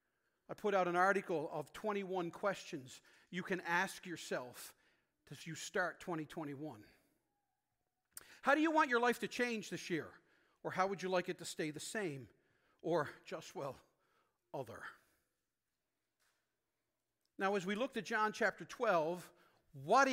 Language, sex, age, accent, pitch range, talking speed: English, male, 50-69, American, 180-230 Hz, 145 wpm